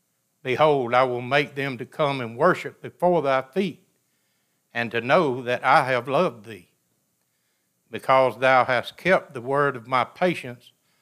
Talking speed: 160 wpm